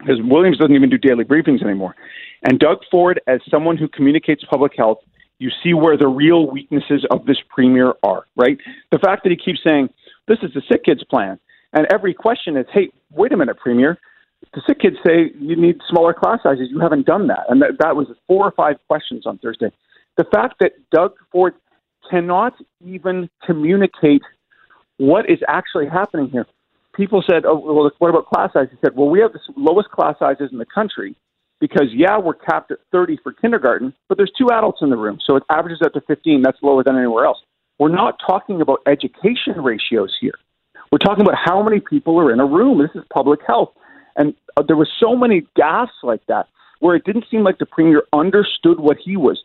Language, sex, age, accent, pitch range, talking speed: English, male, 40-59, American, 145-200 Hz, 210 wpm